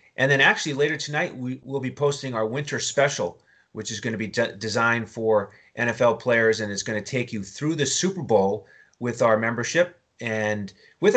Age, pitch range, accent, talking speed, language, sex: 30-49, 115-145 Hz, American, 195 wpm, English, male